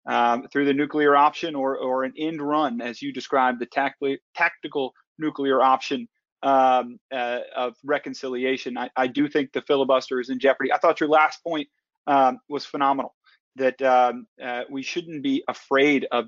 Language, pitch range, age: English, 125-150 Hz, 30-49